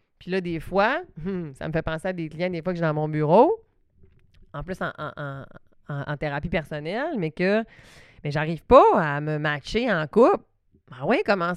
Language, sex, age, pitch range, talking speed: French, female, 30-49, 155-205 Hz, 205 wpm